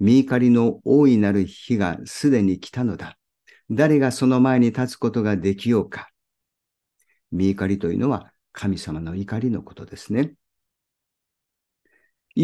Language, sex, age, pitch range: Japanese, male, 50-69, 100-130 Hz